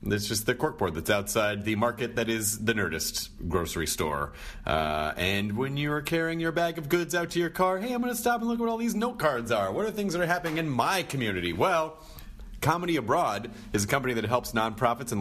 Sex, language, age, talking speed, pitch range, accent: male, English, 30-49, 235 wpm, 110-155 Hz, American